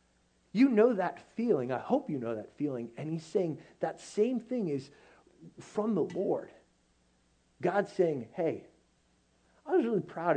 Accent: American